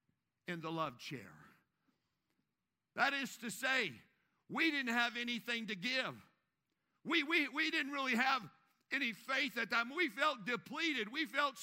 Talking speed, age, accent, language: 160 wpm, 50-69, American, English